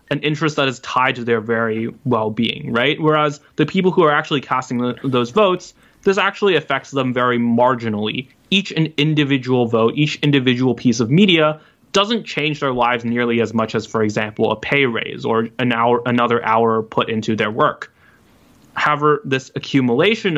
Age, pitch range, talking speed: 20-39, 115-140 Hz, 165 wpm